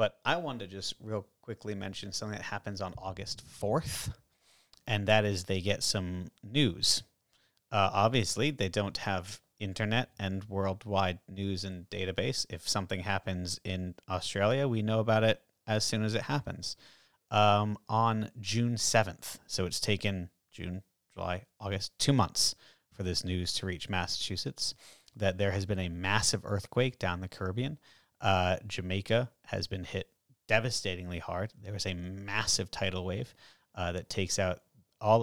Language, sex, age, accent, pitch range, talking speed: English, male, 30-49, American, 95-110 Hz, 155 wpm